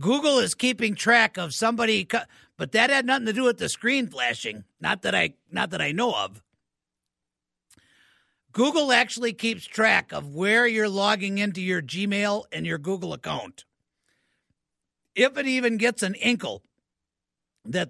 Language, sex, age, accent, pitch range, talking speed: English, male, 50-69, American, 185-235 Hz, 155 wpm